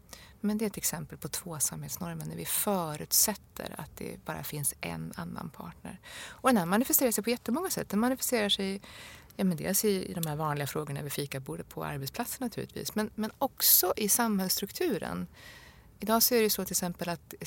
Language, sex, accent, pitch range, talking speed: English, female, Swedish, 145-210 Hz, 190 wpm